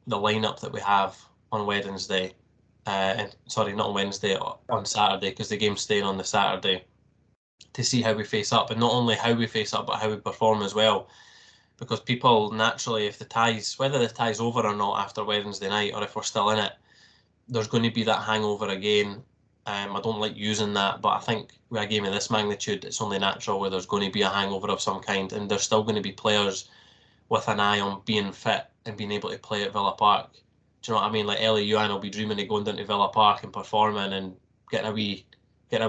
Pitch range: 105-115 Hz